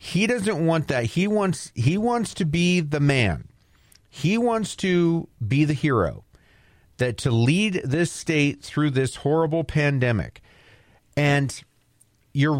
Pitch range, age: 115-165 Hz, 40-59